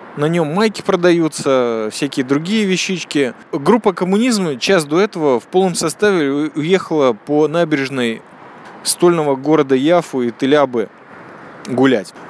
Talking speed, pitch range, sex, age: 115 wpm, 135-195 Hz, male, 20-39